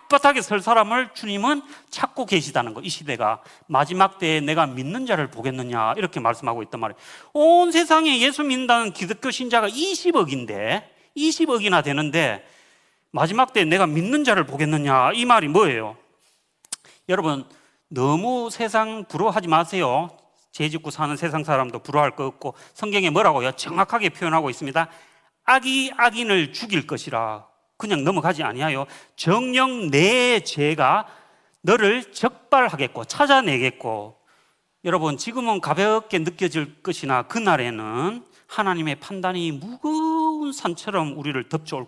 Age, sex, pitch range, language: 30-49, male, 150-240 Hz, Korean